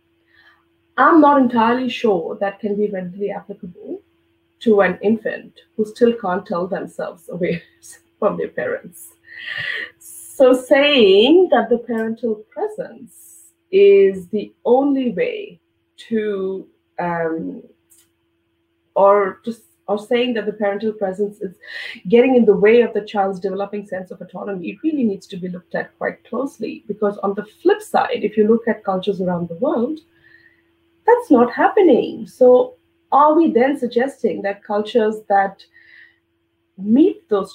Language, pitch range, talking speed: English, 185-250 Hz, 140 wpm